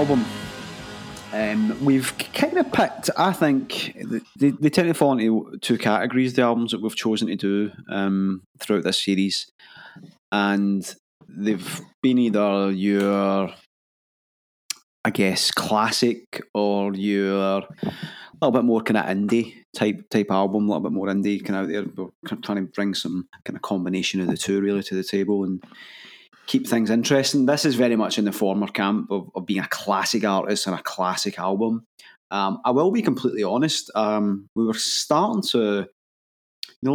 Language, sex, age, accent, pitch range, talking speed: English, male, 30-49, British, 95-120 Hz, 165 wpm